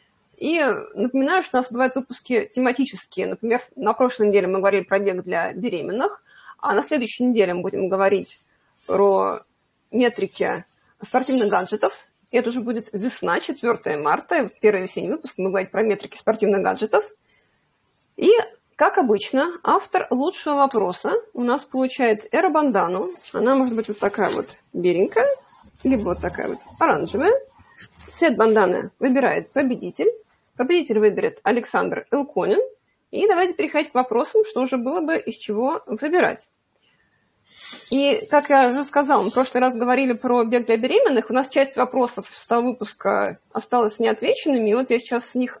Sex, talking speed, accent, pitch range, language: female, 155 wpm, native, 220-290 Hz, Russian